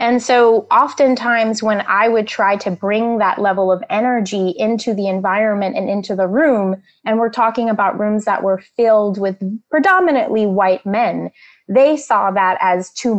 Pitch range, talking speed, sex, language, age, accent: 190-230 Hz, 170 wpm, female, English, 20-39, American